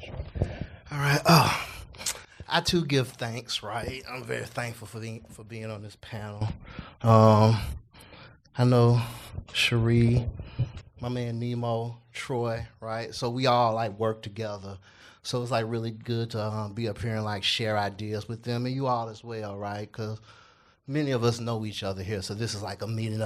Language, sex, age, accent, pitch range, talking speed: English, male, 30-49, American, 105-120 Hz, 180 wpm